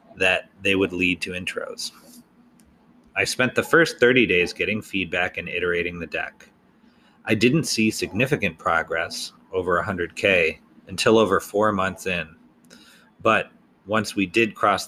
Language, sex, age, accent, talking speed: English, male, 30-49, American, 140 wpm